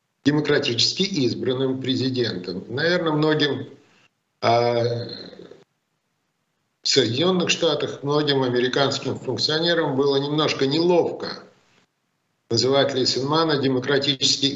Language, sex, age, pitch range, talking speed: Russian, male, 50-69, 125-165 Hz, 70 wpm